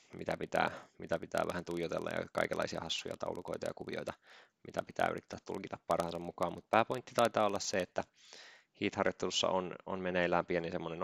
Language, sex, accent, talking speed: Finnish, male, native, 170 wpm